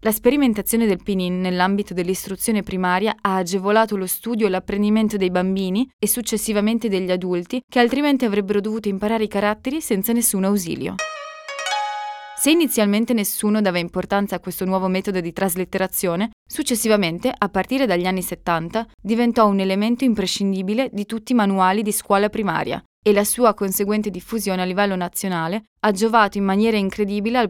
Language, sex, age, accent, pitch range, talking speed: Italian, female, 20-39, native, 190-225 Hz, 155 wpm